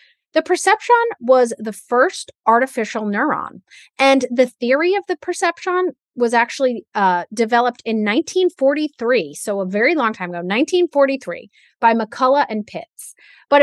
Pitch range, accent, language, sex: 200-275 Hz, American, English, female